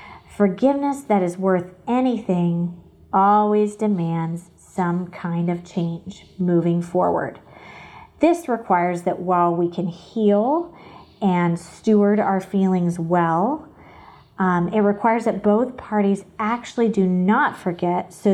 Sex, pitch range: female, 175-210 Hz